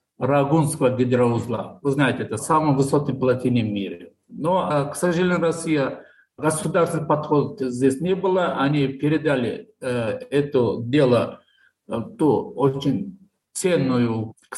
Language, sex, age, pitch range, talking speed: Russian, male, 50-69, 130-155 Hz, 120 wpm